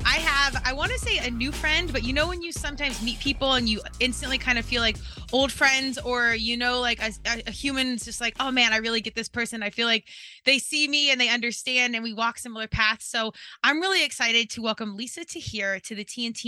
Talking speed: 255 wpm